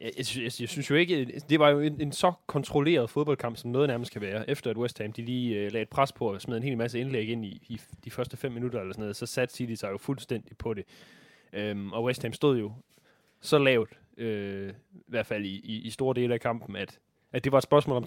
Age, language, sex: 20-39, Danish, male